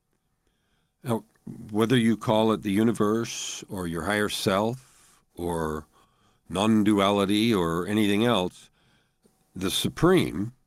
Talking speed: 100 wpm